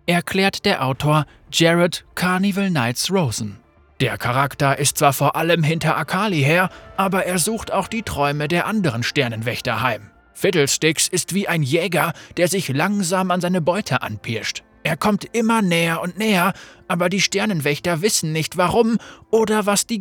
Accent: German